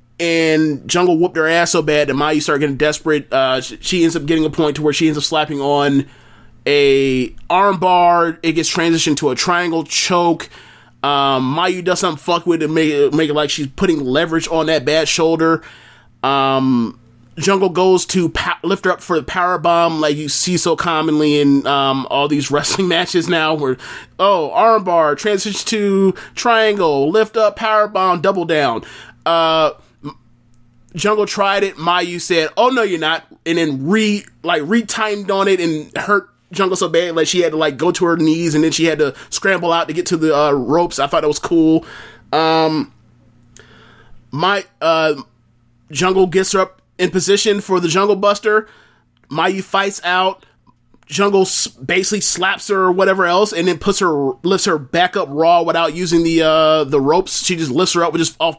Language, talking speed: English, 195 wpm